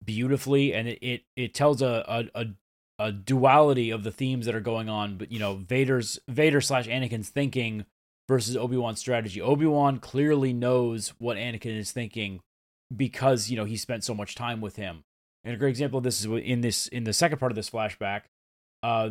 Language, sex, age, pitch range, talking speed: English, male, 20-39, 110-135 Hz, 200 wpm